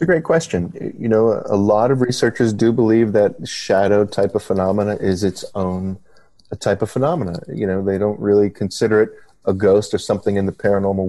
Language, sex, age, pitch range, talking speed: English, male, 30-49, 95-110 Hz, 195 wpm